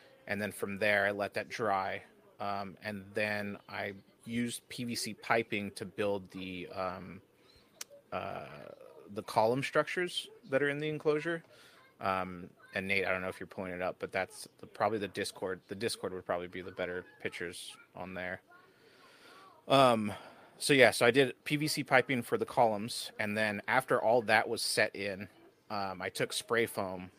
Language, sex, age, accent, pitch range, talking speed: English, male, 30-49, American, 95-115 Hz, 175 wpm